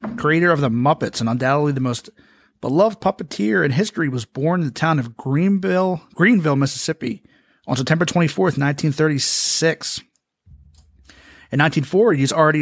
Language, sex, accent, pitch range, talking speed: English, male, American, 125-160 Hz, 145 wpm